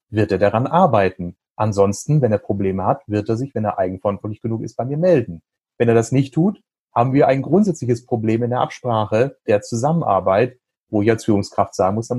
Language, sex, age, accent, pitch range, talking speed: German, male, 30-49, German, 110-140 Hz, 205 wpm